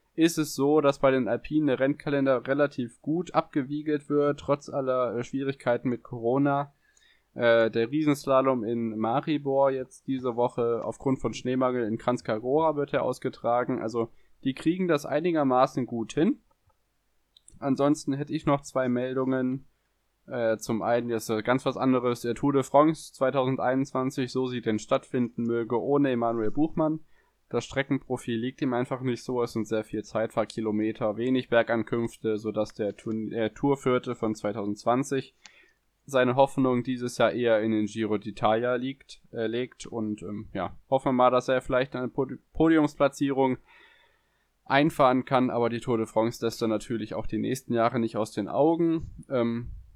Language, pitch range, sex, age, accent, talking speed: German, 115-135 Hz, male, 10-29, German, 155 wpm